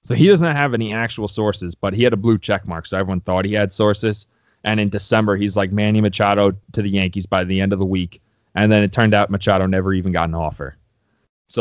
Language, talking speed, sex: English, 250 wpm, male